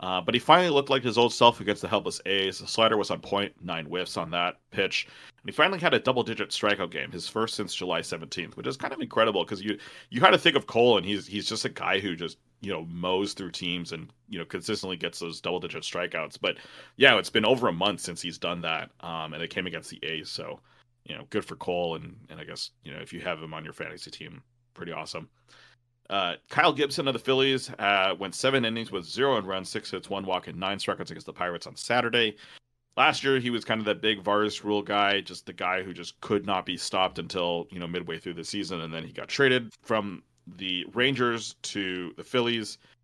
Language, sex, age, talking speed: English, male, 30-49, 240 wpm